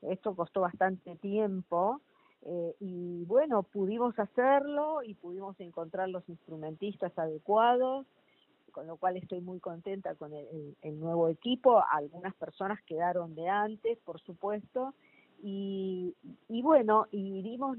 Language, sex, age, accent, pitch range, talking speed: Spanish, female, 40-59, Argentinian, 175-230 Hz, 130 wpm